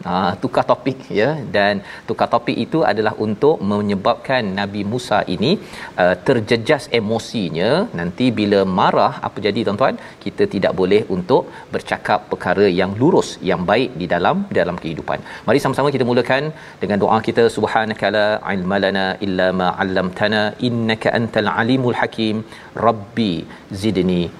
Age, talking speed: 40-59, 135 wpm